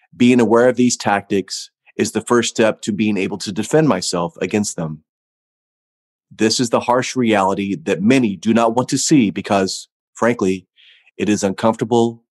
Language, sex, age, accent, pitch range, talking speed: English, male, 30-49, American, 95-120 Hz, 165 wpm